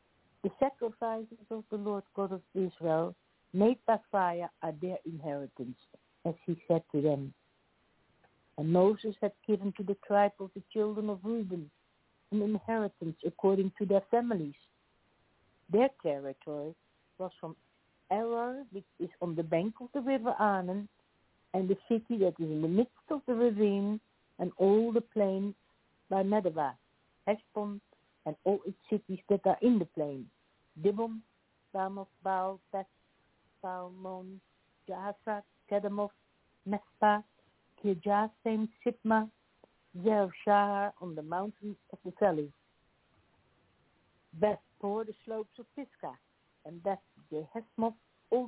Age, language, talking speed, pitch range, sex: 60-79, English, 130 wpm, 175-215 Hz, female